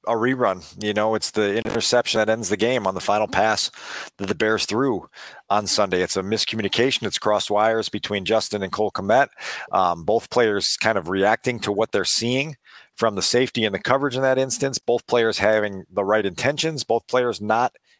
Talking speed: 200 wpm